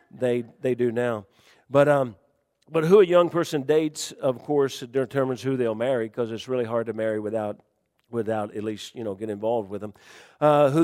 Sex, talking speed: male, 200 wpm